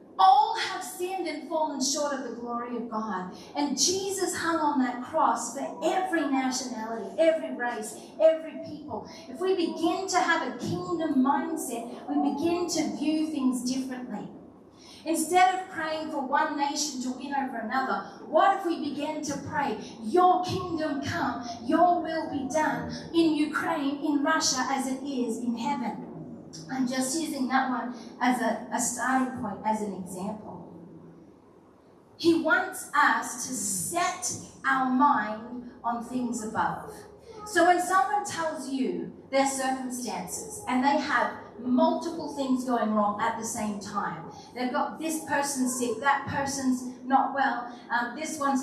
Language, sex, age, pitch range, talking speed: English, female, 30-49, 240-310 Hz, 150 wpm